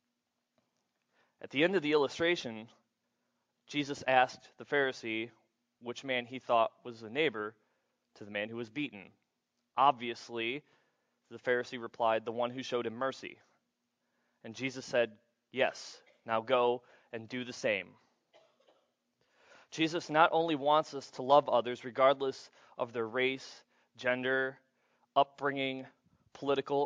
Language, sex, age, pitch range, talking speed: English, male, 20-39, 120-140 Hz, 130 wpm